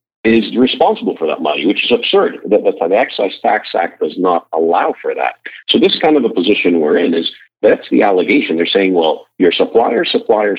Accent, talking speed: American, 210 wpm